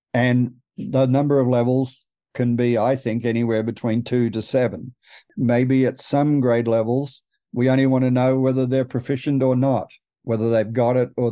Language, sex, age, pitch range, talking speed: English, male, 50-69, 115-130 Hz, 180 wpm